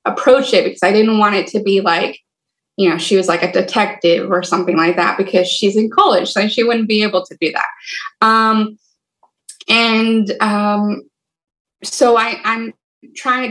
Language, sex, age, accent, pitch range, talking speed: English, female, 20-39, American, 180-225 Hz, 180 wpm